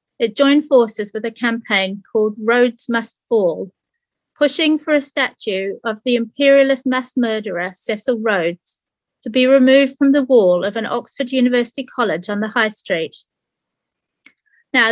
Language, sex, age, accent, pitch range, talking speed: English, female, 30-49, British, 215-265 Hz, 150 wpm